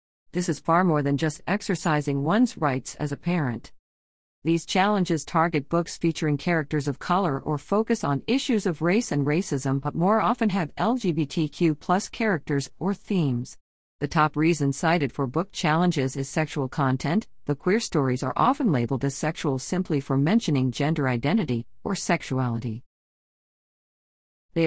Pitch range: 140-185 Hz